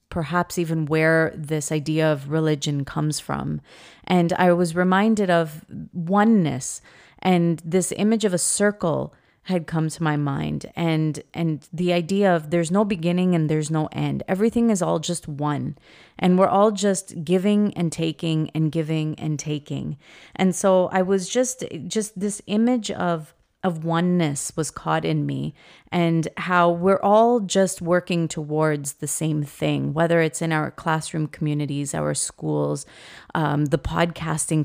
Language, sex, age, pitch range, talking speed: English, female, 30-49, 150-185 Hz, 155 wpm